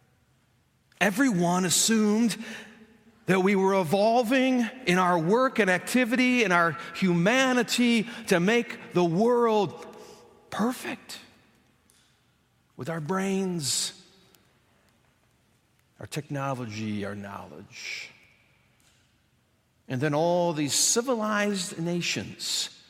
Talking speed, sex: 85 wpm, male